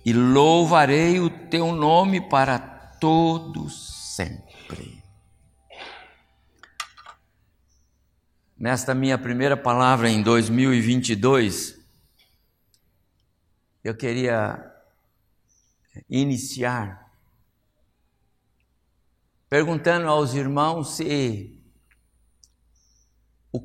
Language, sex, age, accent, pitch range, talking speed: Portuguese, male, 60-79, Brazilian, 95-150 Hz, 55 wpm